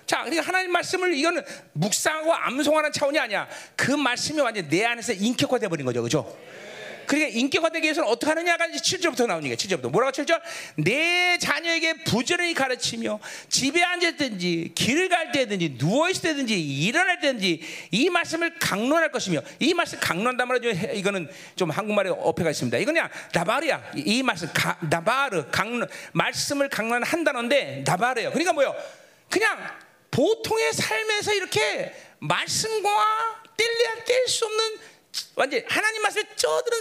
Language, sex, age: Korean, male, 40-59